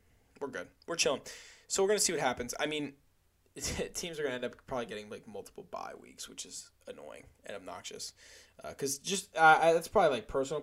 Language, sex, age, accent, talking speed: English, male, 10-29, American, 210 wpm